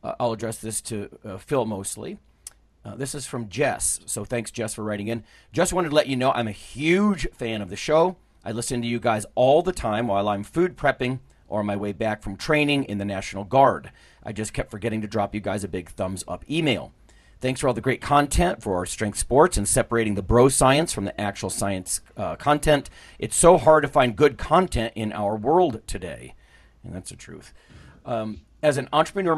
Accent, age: American, 40-59